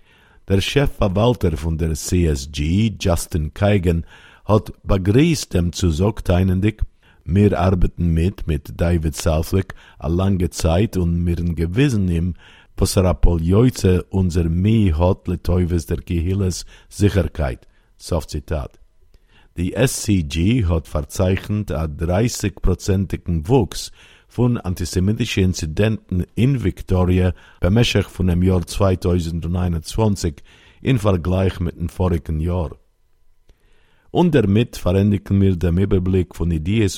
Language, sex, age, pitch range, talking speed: Hebrew, male, 50-69, 85-100 Hz, 105 wpm